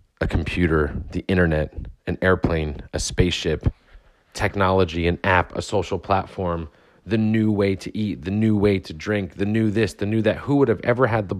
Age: 30-49